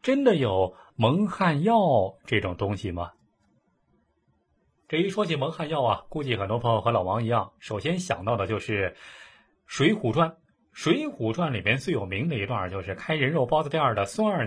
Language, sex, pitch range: Chinese, male, 110-185 Hz